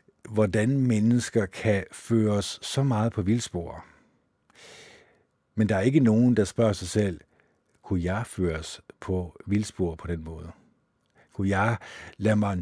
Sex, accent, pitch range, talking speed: male, native, 90-115 Hz, 140 wpm